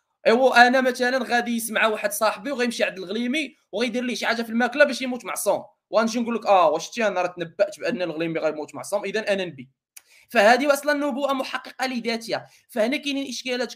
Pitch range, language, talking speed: 220-275 Hz, Arabic, 185 wpm